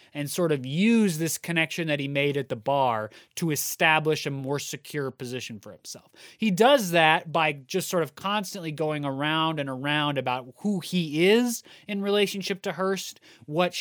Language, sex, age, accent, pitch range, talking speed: English, male, 30-49, American, 140-190 Hz, 180 wpm